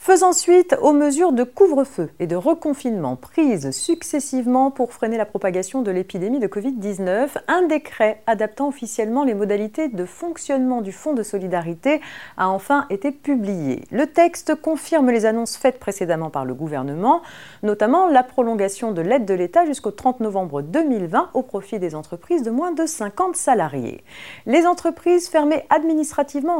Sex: female